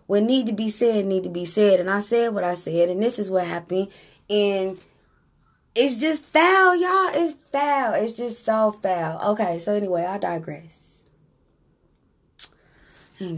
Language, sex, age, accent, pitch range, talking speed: English, female, 20-39, American, 175-245 Hz, 165 wpm